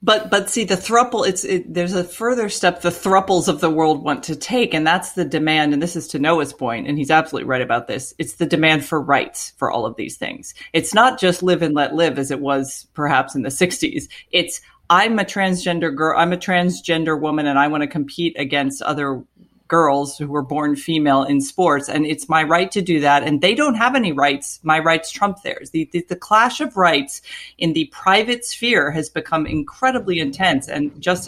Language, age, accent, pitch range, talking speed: English, 40-59, American, 145-180 Hz, 220 wpm